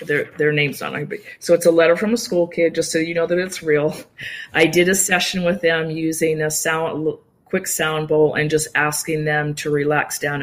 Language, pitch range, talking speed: English, 155-185 Hz, 225 wpm